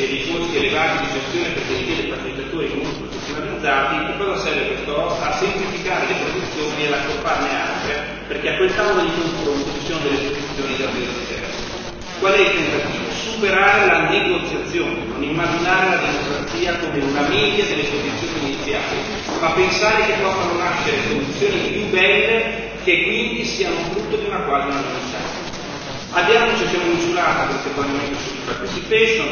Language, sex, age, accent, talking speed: Italian, female, 30-49, native, 155 wpm